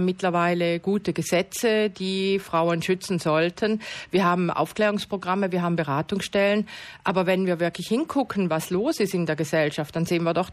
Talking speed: 160 wpm